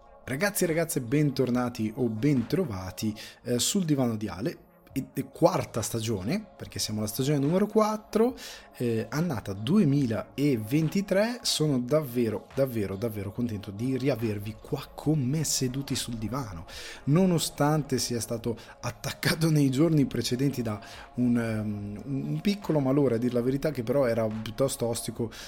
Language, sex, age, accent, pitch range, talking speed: Italian, male, 20-39, native, 110-140 Hz, 140 wpm